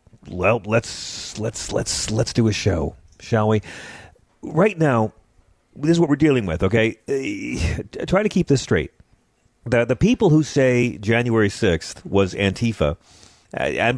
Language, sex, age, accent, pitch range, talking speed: English, male, 40-59, American, 95-145 Hz, 150 wpm